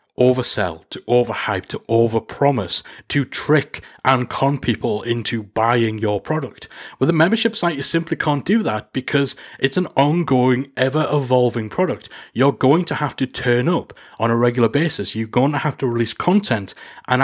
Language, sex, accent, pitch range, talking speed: English, male, British, 120-155 Hz, 165 wpm